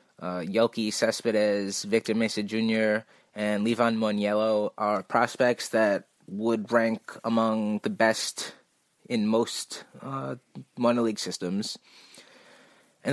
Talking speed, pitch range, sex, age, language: 110 wpm, 105-120 Hz, male, 20-39, English